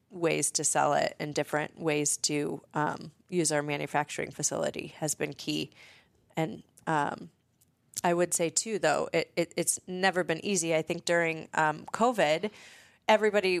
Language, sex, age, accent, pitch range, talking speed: English, female, 30-49, American, 160-205 Hz, 155 wpm